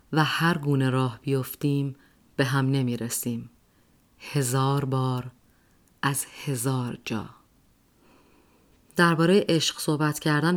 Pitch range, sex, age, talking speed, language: 130-160 Hz, female, 30-49, 95 wpm, Persian